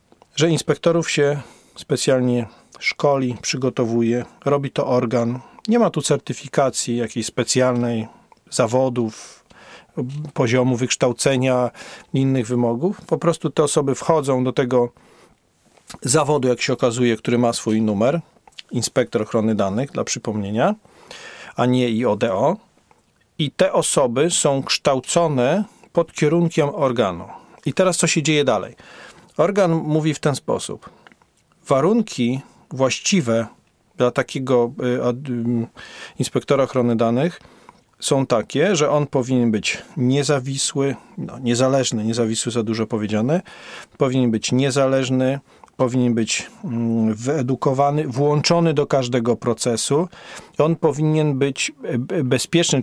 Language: Polish